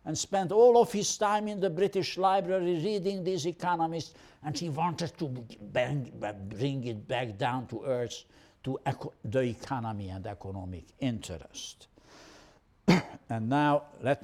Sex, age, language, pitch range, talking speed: male, 60-79, English, 110-170 Hz, 135 wpm